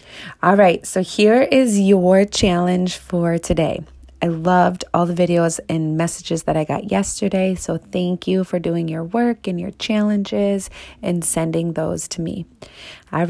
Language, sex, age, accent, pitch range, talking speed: English, female, 30-49, American, 165-210 Hz, 160 wpm